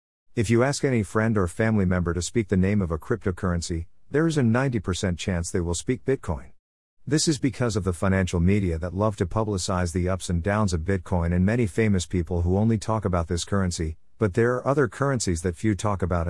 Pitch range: 85-115 Hz